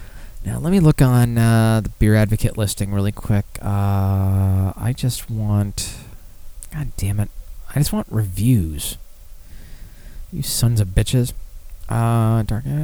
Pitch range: 95-130 Hz